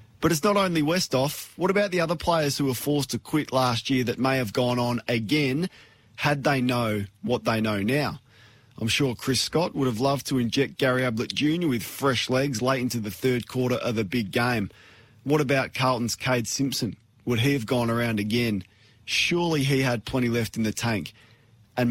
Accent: Australian